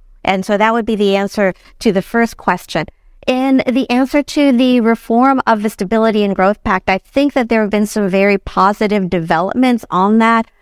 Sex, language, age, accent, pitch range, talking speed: female, English, 50-69, American, 190-225 Hz, 200 wpm